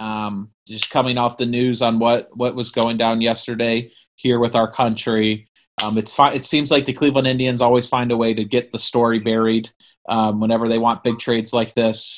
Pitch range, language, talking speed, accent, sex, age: 115-140 Hz, English, 210 wpm, American, male, 30-49